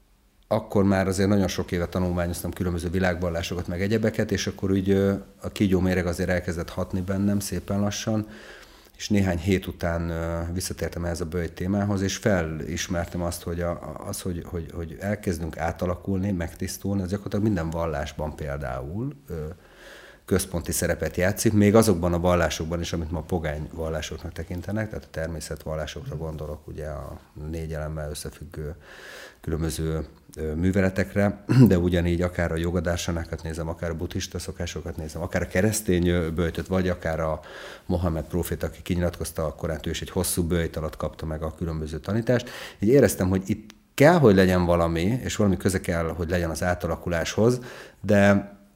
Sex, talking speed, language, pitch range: male, 155 wpm, Hungarian, 80-100 Hz